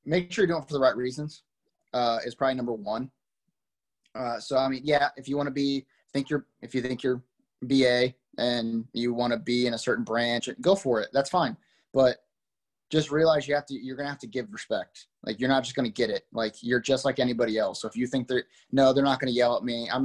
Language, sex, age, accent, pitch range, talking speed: English, male, 20-39, American, 125-145 Hz, 255 wpm